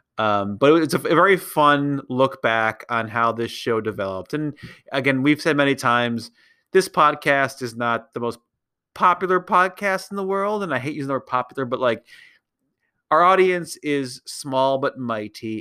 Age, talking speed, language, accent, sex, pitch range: 30-49, 175 wpm, English, American, male, 110-135 Hz